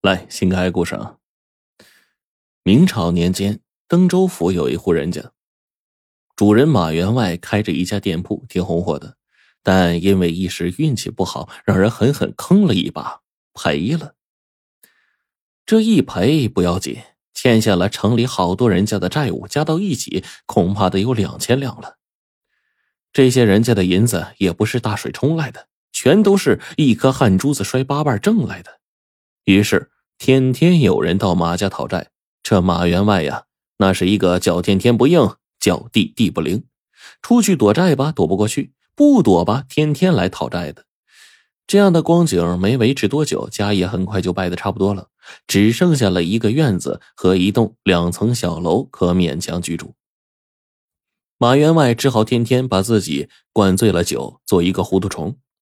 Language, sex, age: Chinese, male, 20-39